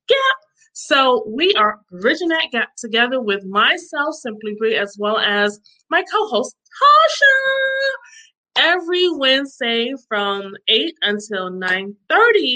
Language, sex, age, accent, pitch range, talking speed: English, female, 20-39, American, 205-275 Hz, 120 wpm